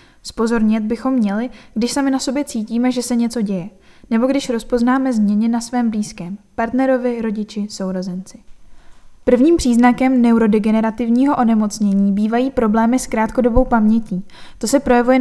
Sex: female